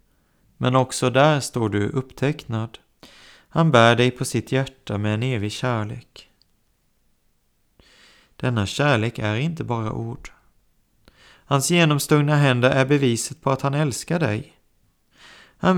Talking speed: 125 wpm